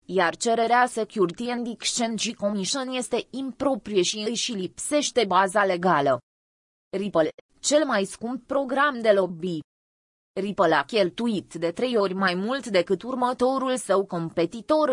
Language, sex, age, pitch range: Romanian, female, 20-39, 185-245 Hz